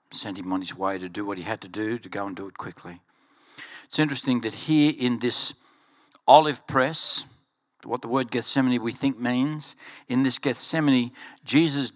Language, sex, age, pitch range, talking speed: English, male, 60-79, 120-155 Hz, 185 wpm